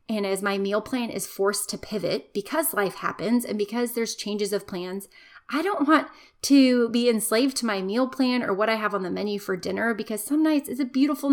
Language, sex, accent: English, female, American